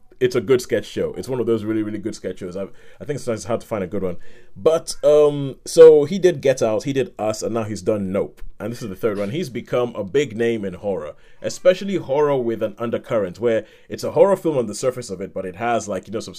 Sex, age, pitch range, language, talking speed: male, 30-49, 105-130 Hz, English, 275 wpm